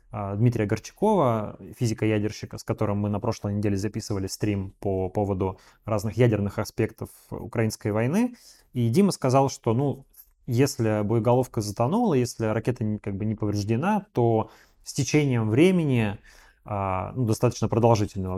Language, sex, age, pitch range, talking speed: Russian, male, 20-39, 105-125 Hz, 120 wpm